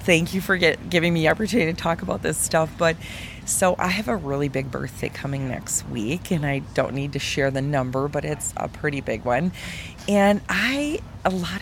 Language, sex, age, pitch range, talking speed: English, female, 30-49, 140-170 Hz, 210 wpm